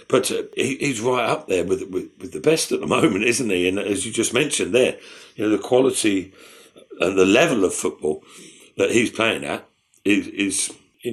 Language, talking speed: English, 210 wpm